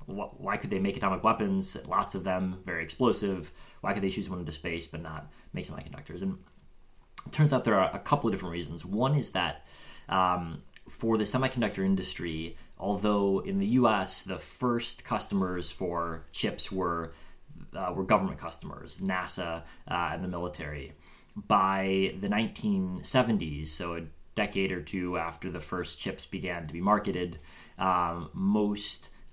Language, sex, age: English, male, 30-49